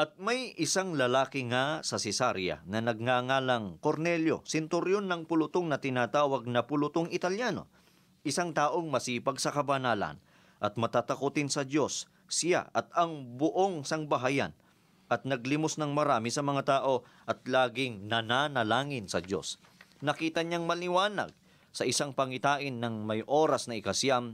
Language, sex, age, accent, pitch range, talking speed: Filipino, male, 40-59, native, 125-165 Hz, 135 wpm